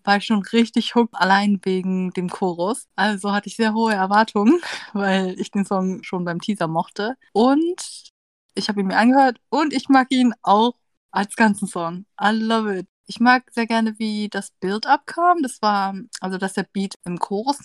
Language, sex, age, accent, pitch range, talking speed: German, female, 20-39, German, 190-240 Hz, 190 wpm